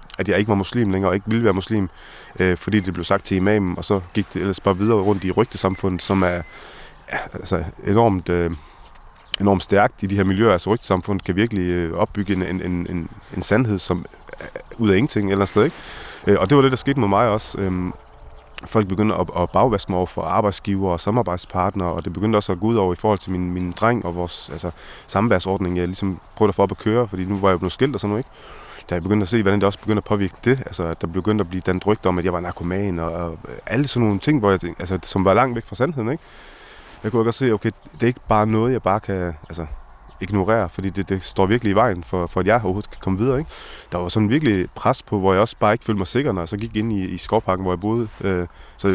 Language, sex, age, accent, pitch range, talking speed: Danish, male, 30-49, native, 90-110 Hz, 260 wpm